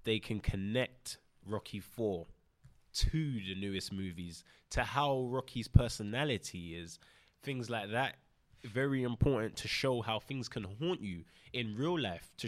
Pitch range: 105-130 Hz